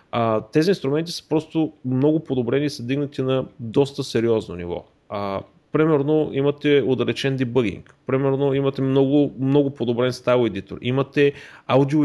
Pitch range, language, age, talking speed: 120-145 Hz, Bulgarian, 30-49, 140 wpm